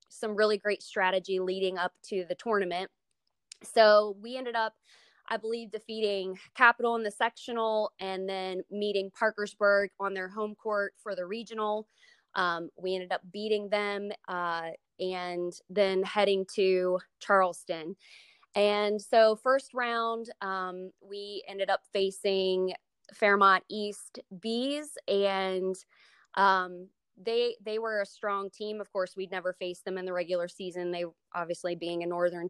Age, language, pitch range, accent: 20-39, English, 185-225 Hz, American